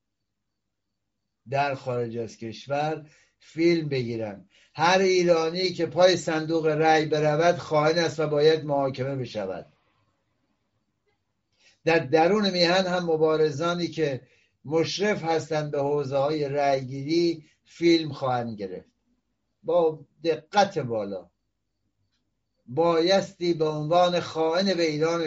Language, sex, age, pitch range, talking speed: Persian, male, 60-79, 125-165 Hz, 105 wpm